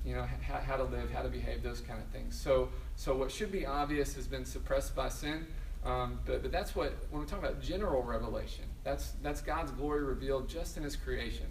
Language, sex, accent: English, male, American